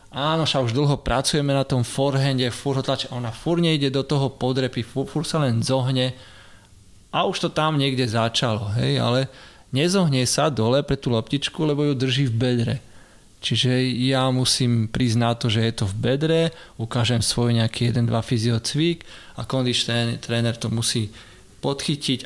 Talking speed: 160 wpm